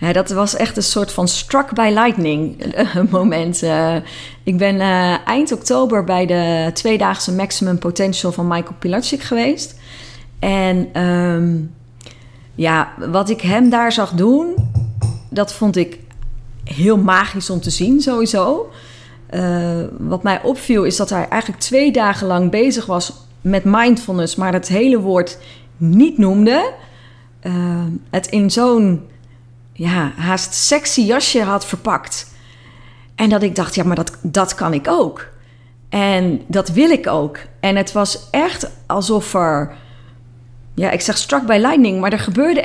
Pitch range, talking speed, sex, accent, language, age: 160-225 Hz, 145 wpm, female, Dutch, Dutch, 30-49